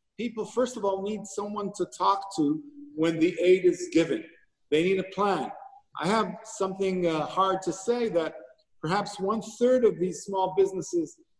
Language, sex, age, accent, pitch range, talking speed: English, male, 50-69, American, 170-220 Hz, 175 wpm